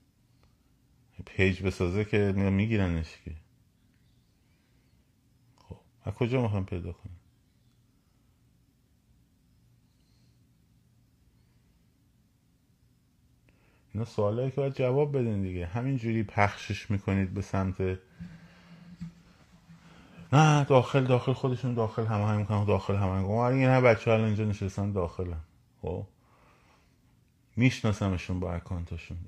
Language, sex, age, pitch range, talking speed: Persian, male, 30-49, 95-120 Hz, 95 wpm